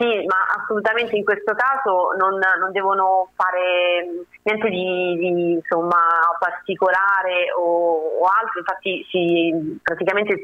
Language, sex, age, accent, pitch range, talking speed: Italian, female, 30-49, native, 175-200 Hz, 120 wpm